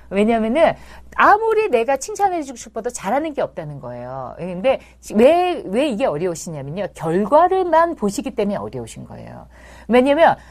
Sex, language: female, Korean